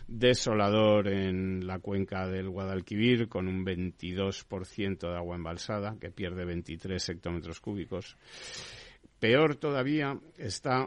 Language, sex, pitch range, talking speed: Spanish, male, 90-110 Hz, 110 wpm